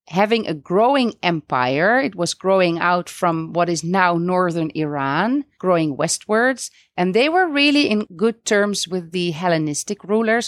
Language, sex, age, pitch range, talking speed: English, female, 30-49, 175-225 Hz, 155 wpm